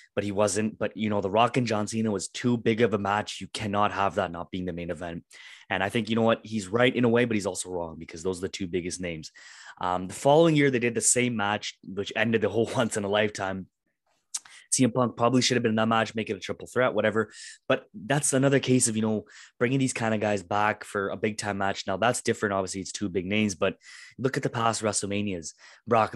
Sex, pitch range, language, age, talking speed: male, 95-120 Hz, English, 20-39, 255 wpm